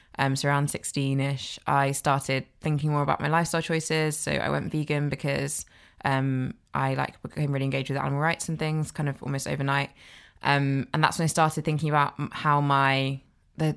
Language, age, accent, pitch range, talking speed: English, 20-39, British, 135-155 Hz, 190 wpm